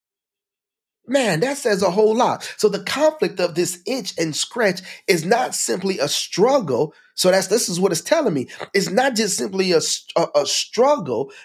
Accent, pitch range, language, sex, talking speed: American, 140-215 Hz, English, male, 185 wpm